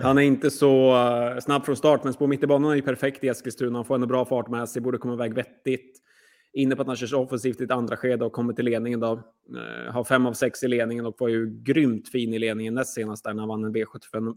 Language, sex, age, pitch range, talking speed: Swedish, male, 20-39, 115-130 Hz, 280 wpm